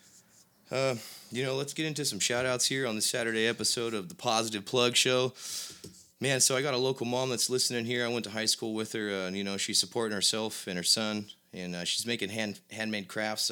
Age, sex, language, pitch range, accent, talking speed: 20-39, male, English, 95-115 Hz, American, 235 wpm